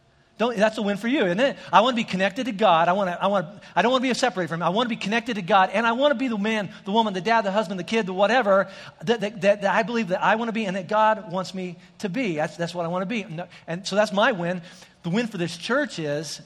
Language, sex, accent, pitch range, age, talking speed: English, male, American, 170-215 Hz, 40-59, 325 wpm